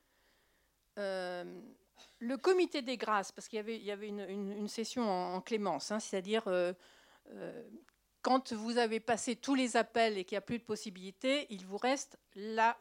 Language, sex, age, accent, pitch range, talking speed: French, female, 50-69, French, 200-250 Hz, 190 wpm